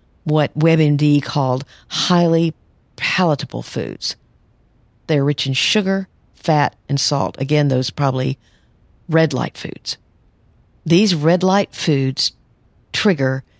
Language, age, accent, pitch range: English, 50-69, American, 140-190 Hz